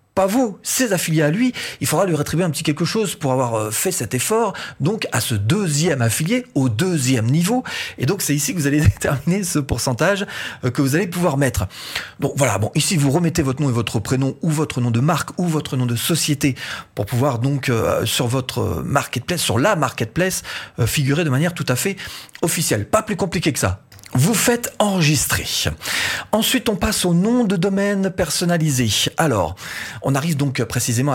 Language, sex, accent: French, male, French